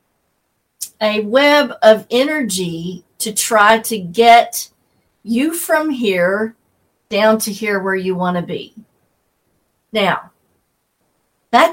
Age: 50-69